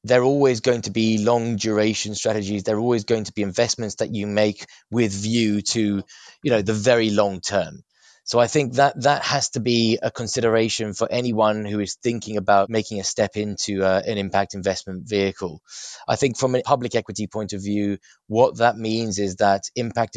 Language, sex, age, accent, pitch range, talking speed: English, male, 20-39, British, 100-115 Hz, 200 wpm